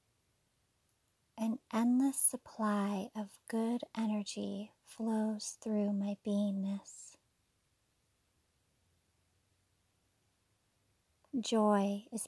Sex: female